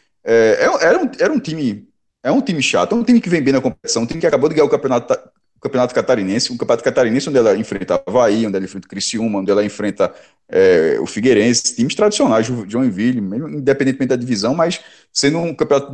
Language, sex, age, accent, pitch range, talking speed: Portuguese, male, 20-39, Brazilian, 125-210 Hz, 215 wpm